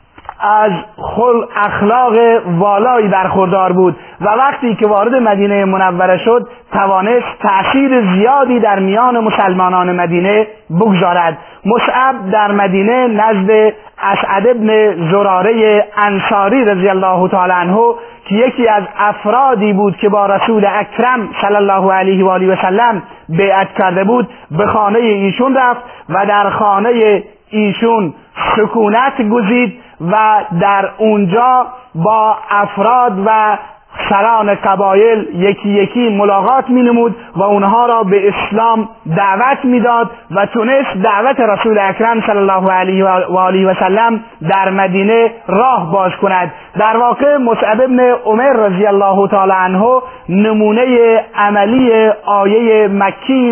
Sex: male